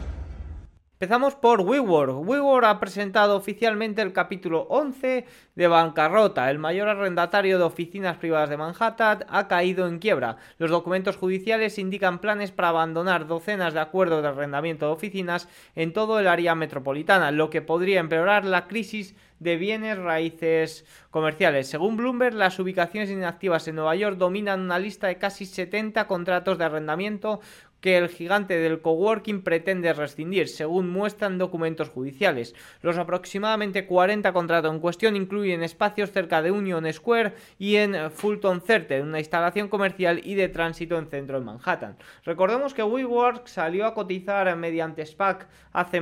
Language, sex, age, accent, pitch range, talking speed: Spanish, male, 30-49, Spanish, 160-205 Hz, 150 wpm